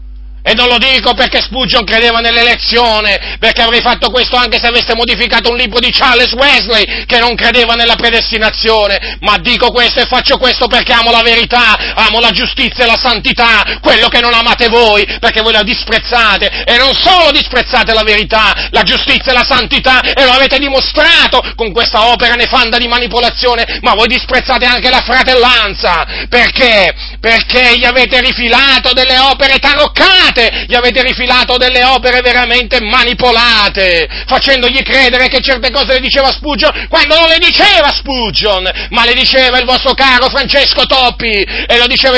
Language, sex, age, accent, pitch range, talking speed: Italian, male, 40-59, native, 235-260 Hz, 165 wpm